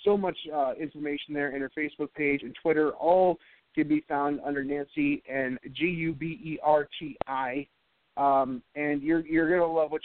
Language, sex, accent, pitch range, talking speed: English, male, American, 140-165 Hz, 160 wpm